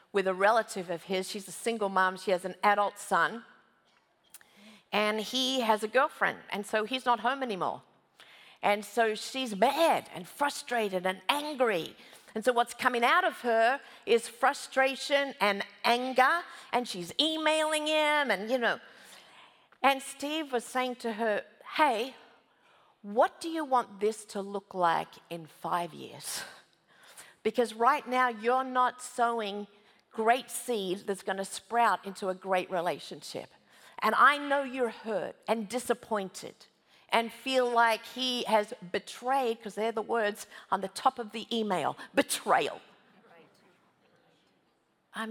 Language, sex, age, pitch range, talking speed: English, female, 50-69, 200-255 Hz, 145 wpm